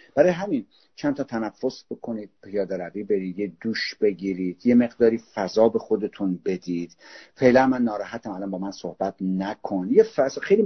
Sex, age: male, 50-69